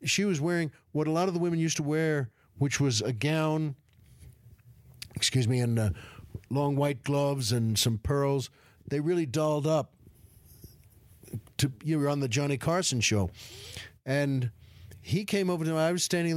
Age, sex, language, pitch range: 50-69, male, English, 110-145 Hz